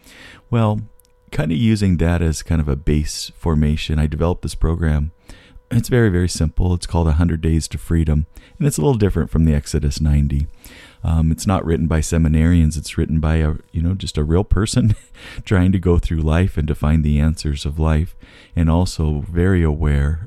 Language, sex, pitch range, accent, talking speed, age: English, male, 75-100 Hz, American, 200 wpm, 40-59